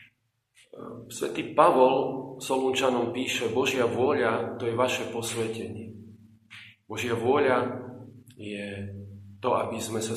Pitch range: 110-125 Hz